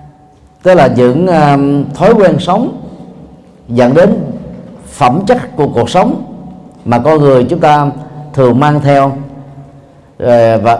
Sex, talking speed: male, 120 wpm